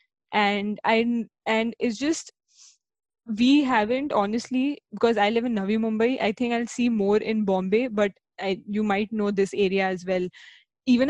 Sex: female